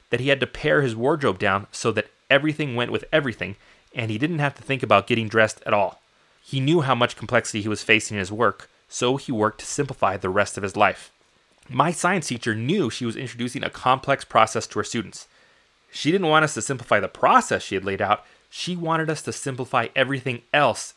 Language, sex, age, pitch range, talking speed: English, male, 30-49, 110-135 Hz, 225 wpm